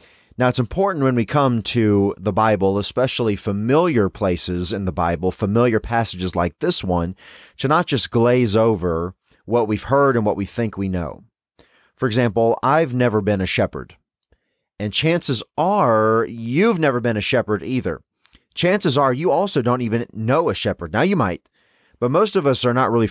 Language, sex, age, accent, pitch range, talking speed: English, male, 30-49, American, 95-125 Hz, 180 wpm